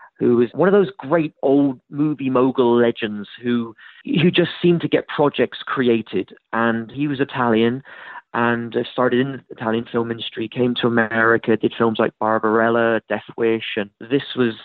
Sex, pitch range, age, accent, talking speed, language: male, 115-130 Hz, 30-49, British, 170 wpm, English